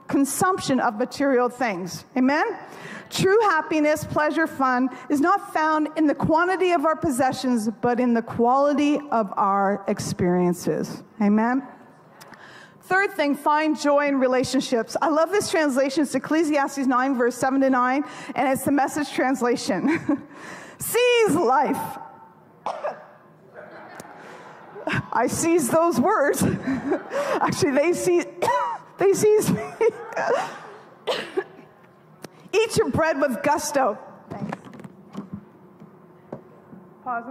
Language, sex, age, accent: English, female, 40-59, American